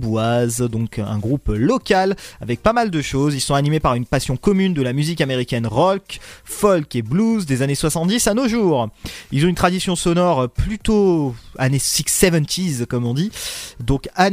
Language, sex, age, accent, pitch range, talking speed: French, male, 30-49, French, 140-200 Hz, 180 wpm